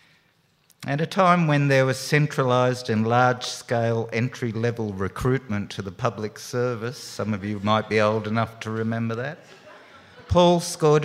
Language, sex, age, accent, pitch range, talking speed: English, male, 50-69, Australian, 110-135 Hz, 145 wpm